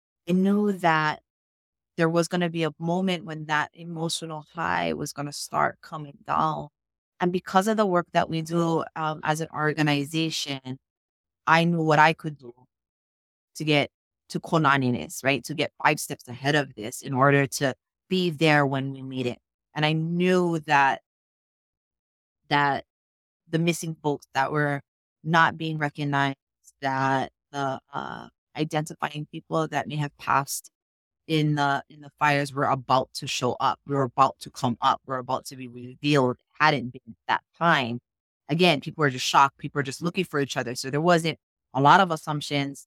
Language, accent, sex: English, American, female